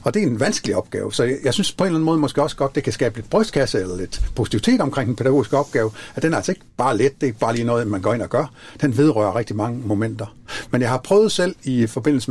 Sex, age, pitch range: male, 60-79, 115-150 Hz